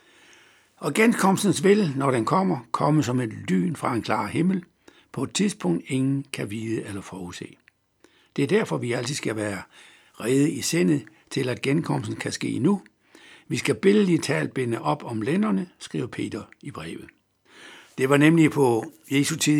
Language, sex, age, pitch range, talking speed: Danish, male, 60-79, 115-165 Hz, 170 wpm